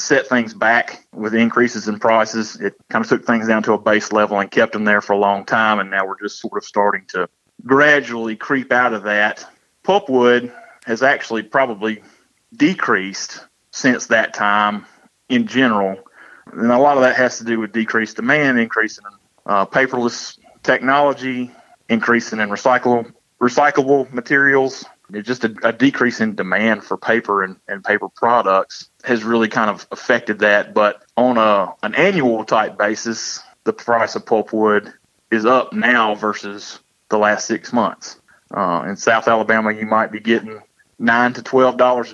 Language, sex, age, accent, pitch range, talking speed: English, male, 30-49, American, 105-125 Hz, 165 wpm